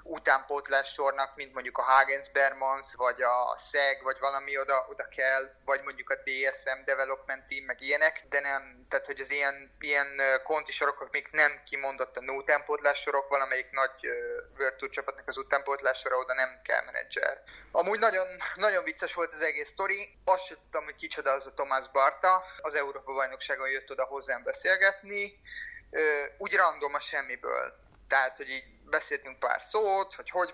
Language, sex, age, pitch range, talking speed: Hungarian, male, 30-49, 135-185 Hz, 160 wpm